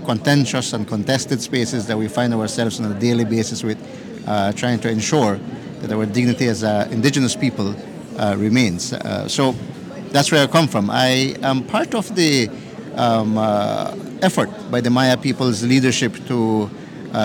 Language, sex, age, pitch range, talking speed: English, male, 50-69, 110-130 Hz, 165 wpm